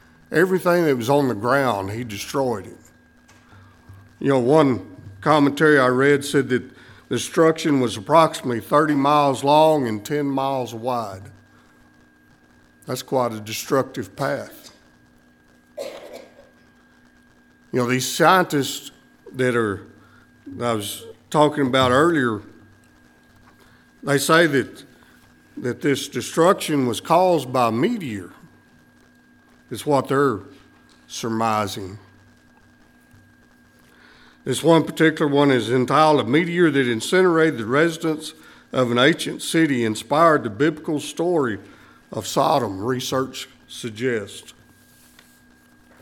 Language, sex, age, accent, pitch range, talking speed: English, male, 60-79, American, 110-150 Hz, 105 wpm